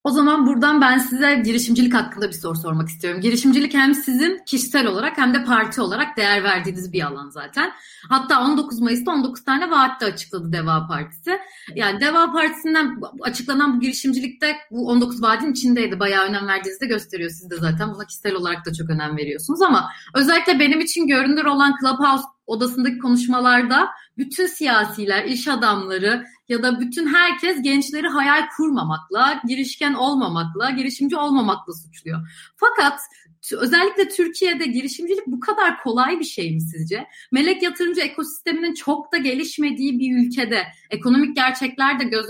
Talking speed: 155 wpm